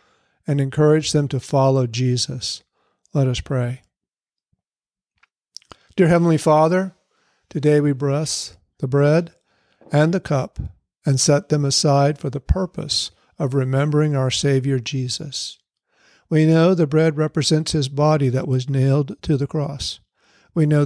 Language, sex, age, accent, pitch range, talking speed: English, male, 50-69, American, 130-155 Hz, 135 wpm